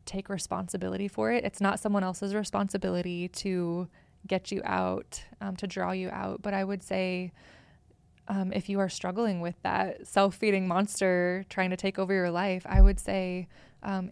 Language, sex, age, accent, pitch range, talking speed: English, female, 20-39, American, 180-195 Hz, 175 wpm